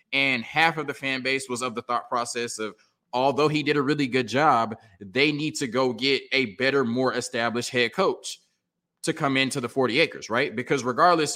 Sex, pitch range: male, 125-160 Hz